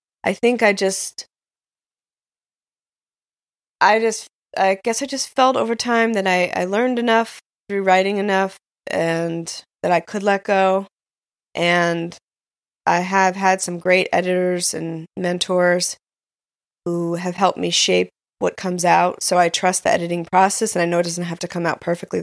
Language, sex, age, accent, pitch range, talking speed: English, female, 20-39, American, 170-200 Hz, 160 wpm